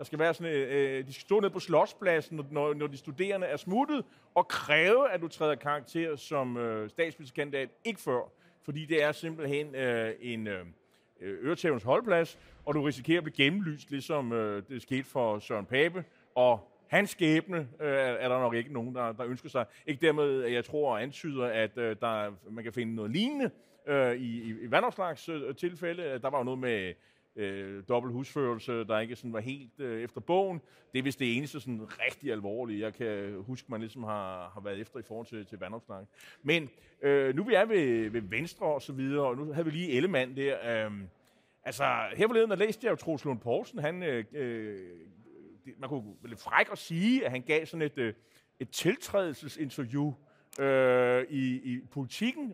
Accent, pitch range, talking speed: native, 120-160 Hz, 185 wpm